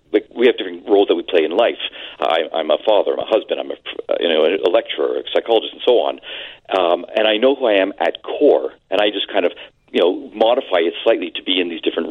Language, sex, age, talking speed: English, male, 40-59, 260 wpm